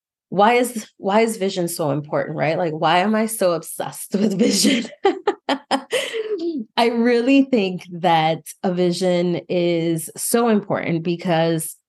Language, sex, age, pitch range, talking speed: English, female, 20-39, 170-235 Hz, 130 wpm